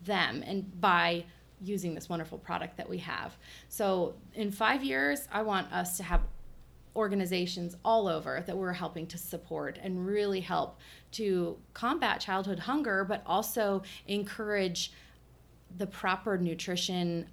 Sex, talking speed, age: female, 140 wpm, 30-49